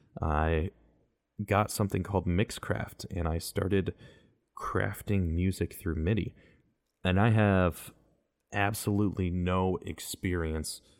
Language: English